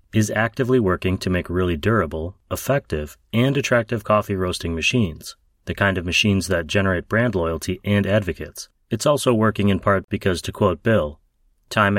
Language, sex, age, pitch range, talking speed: English, male, 30-49, 90-115 Hz, 165 wpm